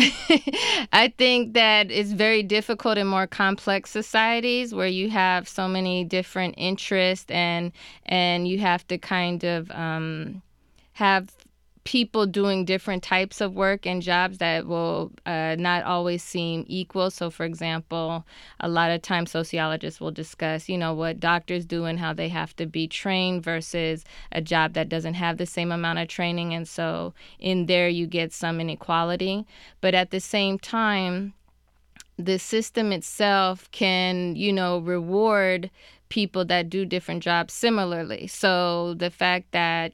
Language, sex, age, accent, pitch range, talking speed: English, female, 20-39, American, 170-190 Hz, 155 wpm